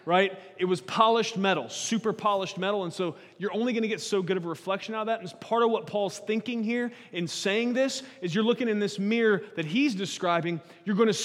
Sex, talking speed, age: male, 245 wpm, 30-49